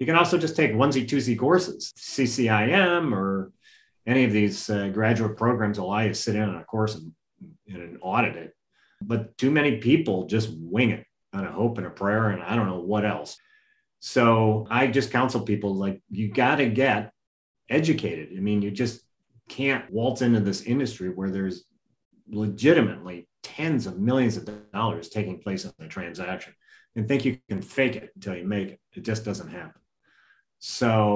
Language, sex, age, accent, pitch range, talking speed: English, male, 30-49, American, 105-130 Hz, 185 wpm